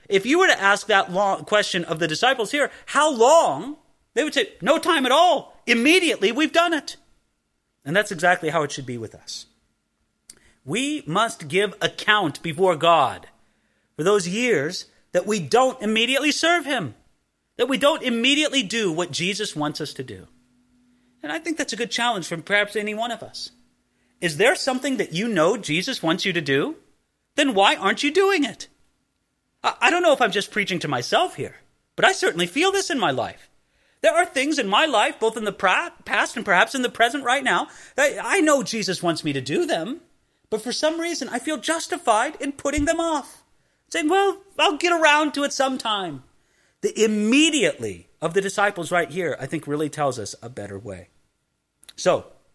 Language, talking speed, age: English, 190 wpm, 30-49